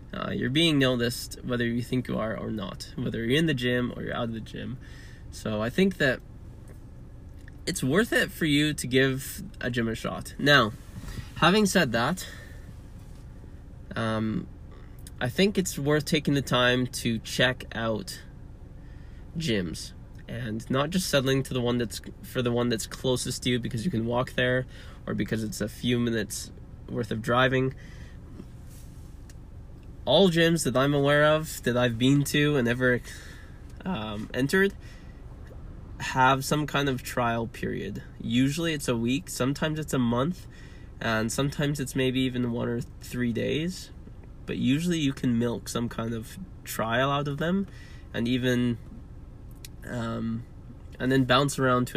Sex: male